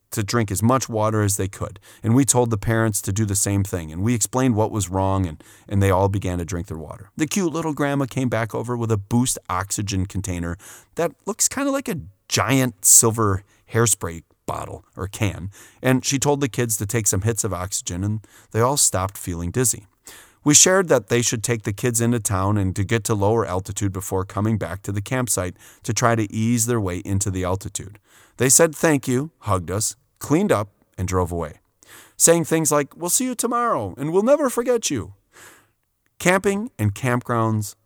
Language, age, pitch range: English, 30-49, 100-130 Hz